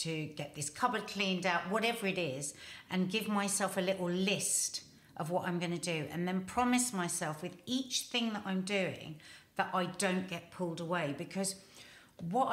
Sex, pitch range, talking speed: female, 165-210 Hz, 185 wpm